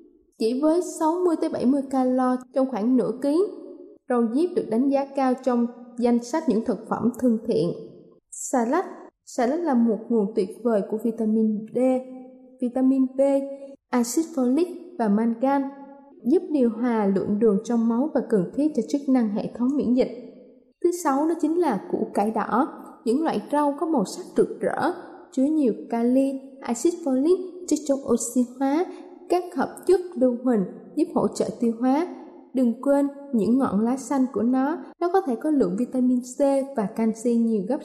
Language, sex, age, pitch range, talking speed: Vietnamese, female, 20-39, 235-295 Hz, 175 wpm